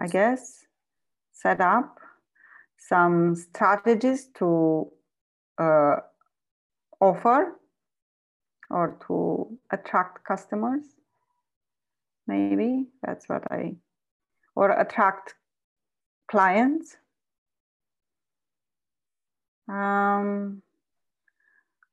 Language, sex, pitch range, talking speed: English, female, 170-230 Hz, 60 wpm